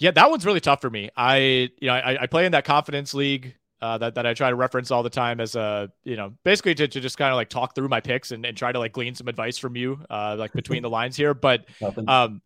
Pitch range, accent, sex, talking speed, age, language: 125-160 Hz, American, male, 290 wpm, 30-49, English